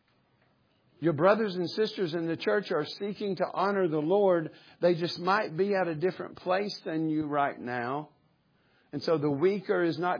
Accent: American